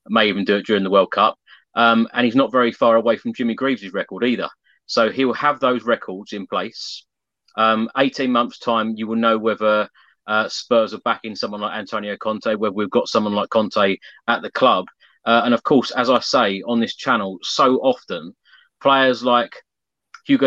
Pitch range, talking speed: 115-135 Hz, 200 wpm